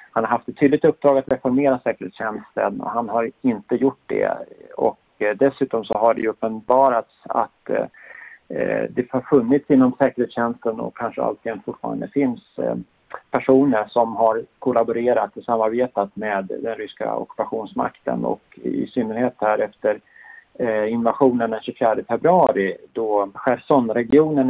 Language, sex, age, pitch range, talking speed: Swedish, male, 50-69, 110-135 Hz, 130 wpm